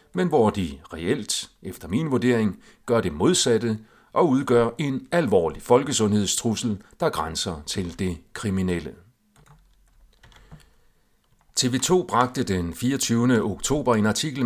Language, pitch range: Danish, 95-125 Hz